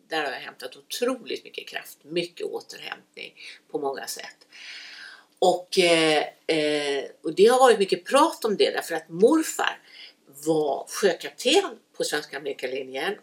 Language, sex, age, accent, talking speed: Swedish, female, 60-79, native, 135 wpm